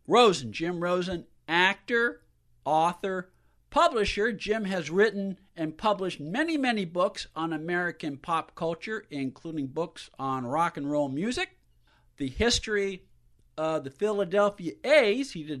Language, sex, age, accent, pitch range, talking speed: English, male, 50-69, American, 150-205 Hz, 125 wpm